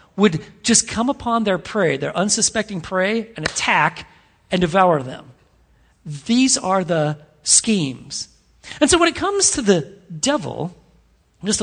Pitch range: 175-235 Hz